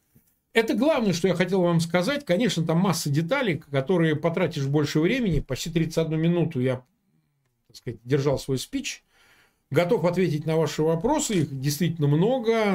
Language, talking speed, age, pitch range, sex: Russian, 150 wpm, 40-59, 130-180 Hz, male